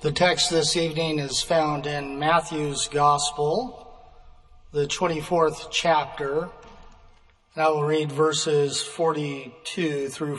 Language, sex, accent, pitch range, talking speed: English, male, American, 155-210 Hz, 110 wpm